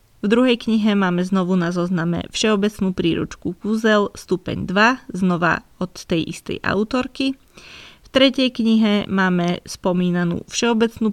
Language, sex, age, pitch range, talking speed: Slovak, female, 20-39, 180-220 Hz, 125 wpm